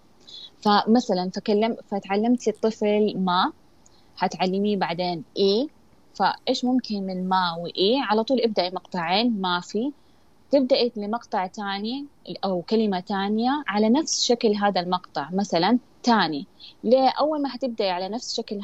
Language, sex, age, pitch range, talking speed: Arabic, female, 20-39, 185-230 Hz, 120 wpm